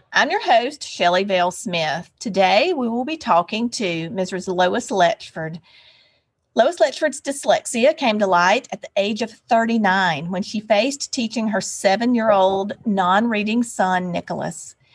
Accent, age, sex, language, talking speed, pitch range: American, 40-59, female, English, 135 wpm, 185-240 Hz